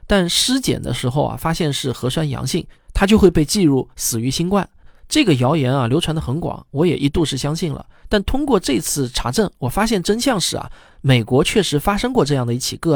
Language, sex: Chinese, male